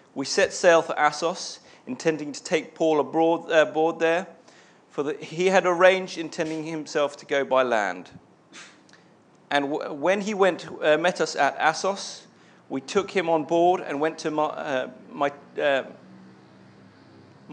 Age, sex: 40-59, male